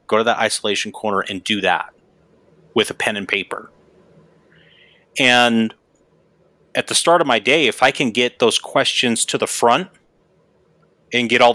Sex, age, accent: male, 30-49, American